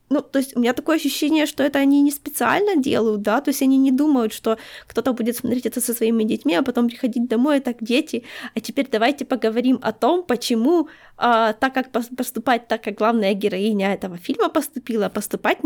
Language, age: Ukrainian, 20-39